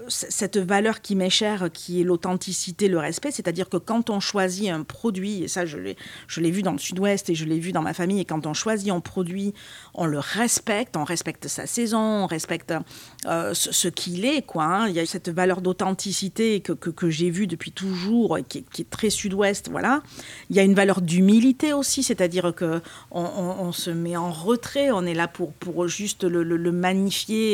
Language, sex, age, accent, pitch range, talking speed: French, female, 40-59, French, 175-220 Hz, 220 wpm